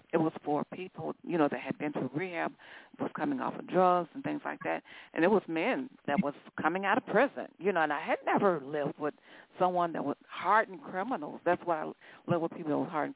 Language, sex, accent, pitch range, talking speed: English, female, American, 165-215 Hz, 235 wpm